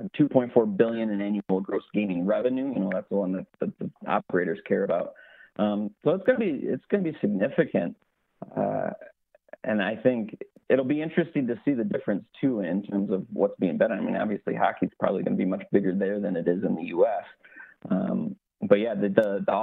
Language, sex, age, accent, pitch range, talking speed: English, male, 30-49, American, 100-125 Hz, 215 wpm